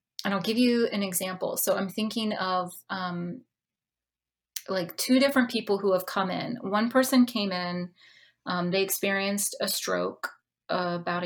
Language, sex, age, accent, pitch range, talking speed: English, female, 30-49, American, 185-225 Hz, 160 wpm